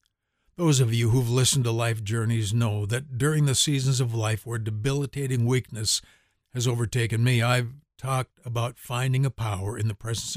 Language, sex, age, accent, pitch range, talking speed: English, male, 60-79, American, 100-130 Hz, 175 wpm